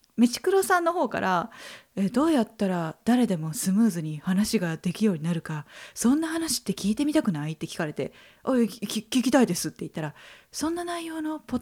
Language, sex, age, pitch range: Japanese, female, 20-39, 190-300 Hz